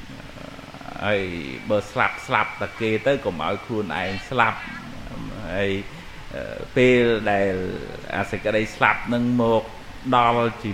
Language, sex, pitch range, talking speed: English, male, 100-115 Hz, 80 wpm